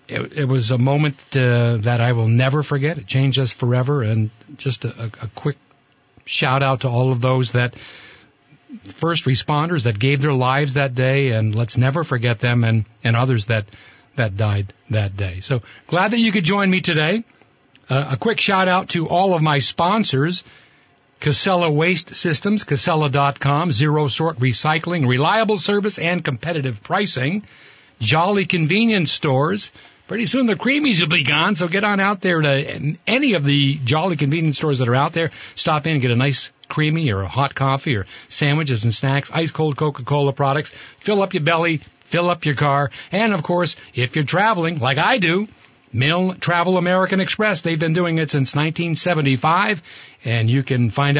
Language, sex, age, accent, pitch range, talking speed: English, male, 60-79, American, 130-175 Hz, 175 wpm